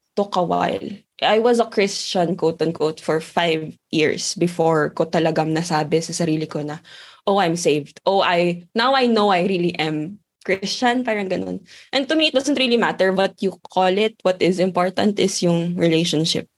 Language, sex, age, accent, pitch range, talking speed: English, female, 20-39, Filipino, 165-215 Hz, 180 wpm